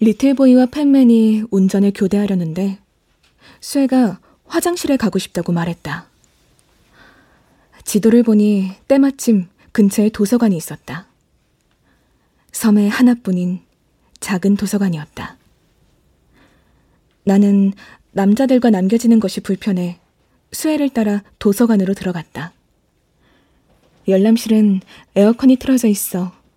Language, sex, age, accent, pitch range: Korean, female, 20-39, native, 190-250 Hz